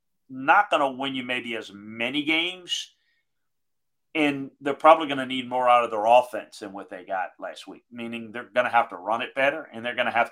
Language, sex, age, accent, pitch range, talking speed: English, male, 40-59, American, 120-165 Hz, 235 wpm